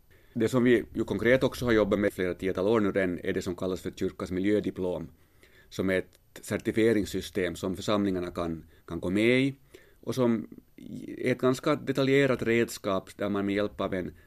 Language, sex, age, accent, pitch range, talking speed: Swedish, male, 30-49, Finnish, 90-115 Hz, 180 wpm